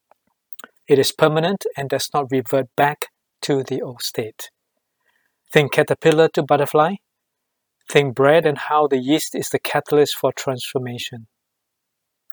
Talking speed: 130 wpm